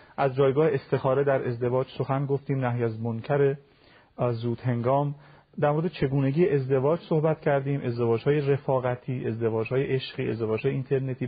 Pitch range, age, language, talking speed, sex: 125-145 Hz, 40-59, Persian, 145 wpm, male